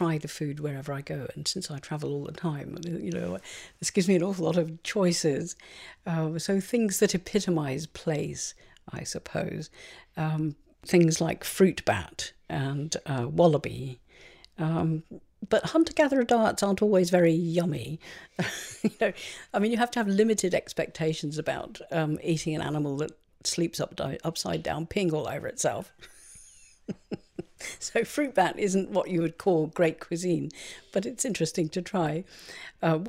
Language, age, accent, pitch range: English, 50-69, British, 150-185 Hz